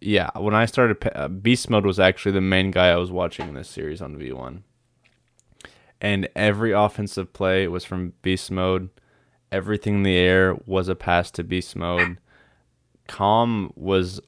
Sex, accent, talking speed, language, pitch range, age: male, American, 165 wpm, English, 90-110 Hz, 20-39